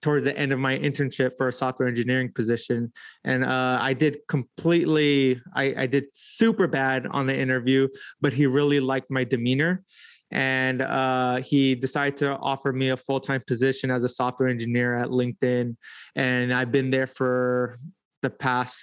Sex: male